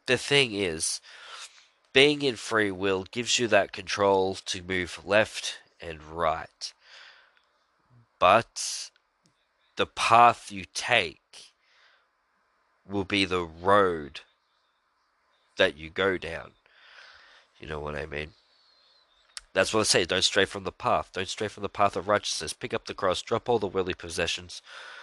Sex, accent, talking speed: male, Australian, 140 wpm